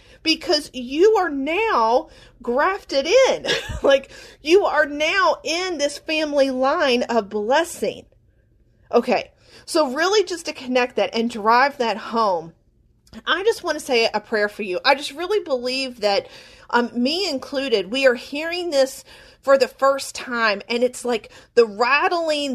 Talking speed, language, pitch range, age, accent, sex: 150 wpm, English, 235-315 Hz, 40-59, American, female